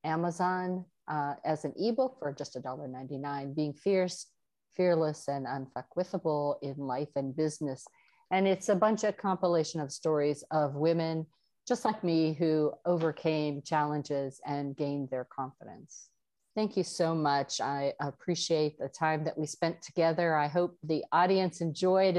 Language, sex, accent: English, female, American